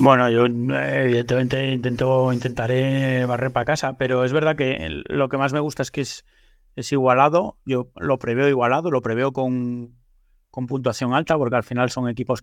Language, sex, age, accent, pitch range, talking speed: Spanish, male, 30-49, Spanish, 115-135 Hz, 180 wpm